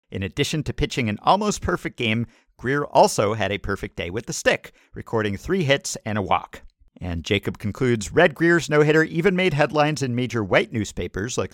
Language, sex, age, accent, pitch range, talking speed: English, male, 50-69, American, 100-155 Hz, 190 wpm